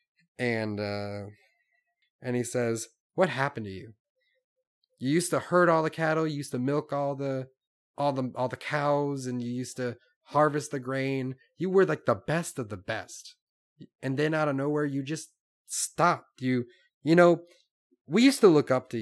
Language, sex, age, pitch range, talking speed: English, male, 30-49, 115-160 Hz, 185 wpm